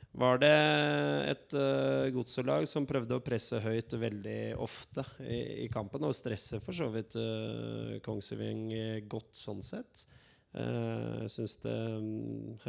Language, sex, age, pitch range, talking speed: English, male, 20-39, 105-120 Hz, 135 wpm